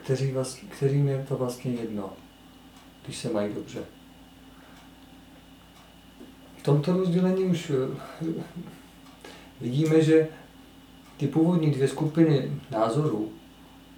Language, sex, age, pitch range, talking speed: Czech, male, 40-59, 125-155 Hz, 85 wpm